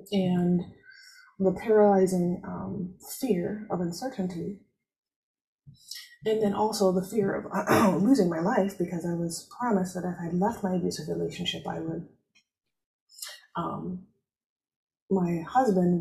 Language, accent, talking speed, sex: English, American, 125 wpm, female